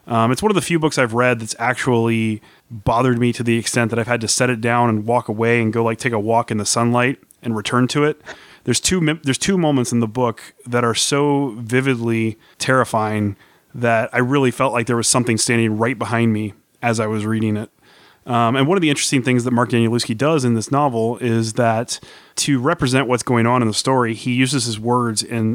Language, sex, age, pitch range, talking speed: English, male, 30-49, 115-130 Hz, 230 wpm